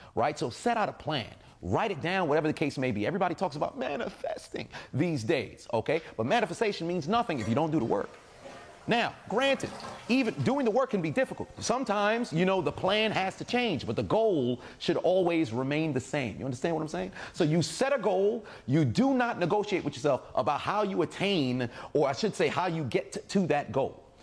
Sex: male